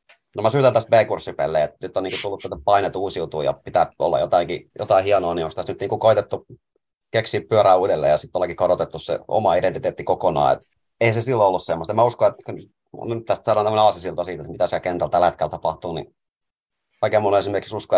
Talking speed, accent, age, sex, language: 210 wpm, native, 30-49, male, Finnish